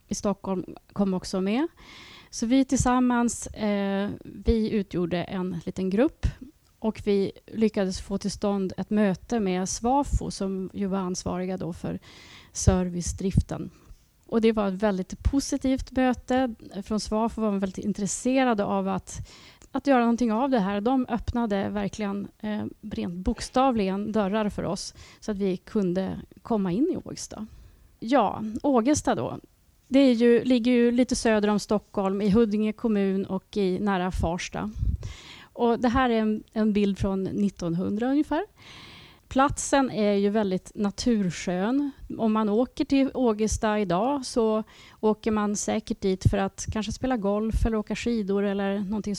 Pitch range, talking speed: 195-240 Hz, 150 wpm